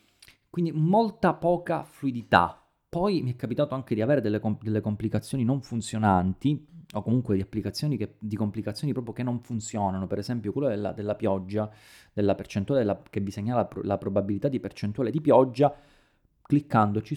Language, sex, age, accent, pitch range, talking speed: Italian, male, 30-49, native, 100-130 Hz, 170 wpm